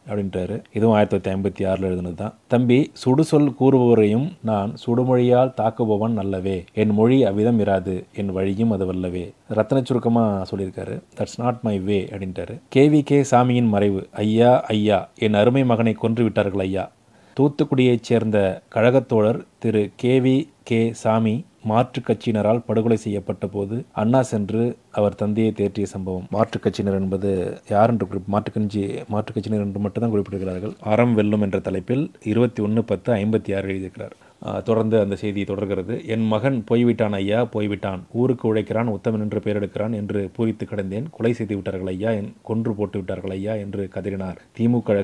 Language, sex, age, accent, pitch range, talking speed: Tamil, male, 30-49, native, 100-115 Hz, 140 wpm